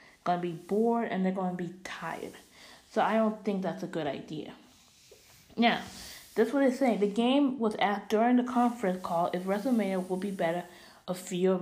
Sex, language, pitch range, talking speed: female, English, 185-220 Hz, 205 wpm